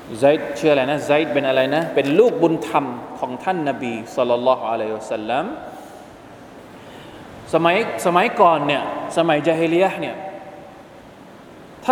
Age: 20-39